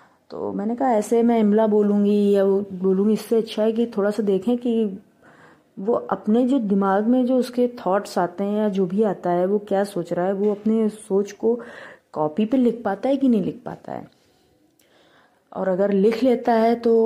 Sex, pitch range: female, 190-230 Hz